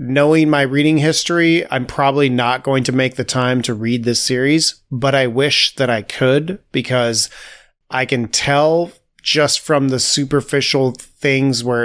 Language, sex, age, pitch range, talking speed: English, male, 30-49, 120-145 Hz, 160 wpm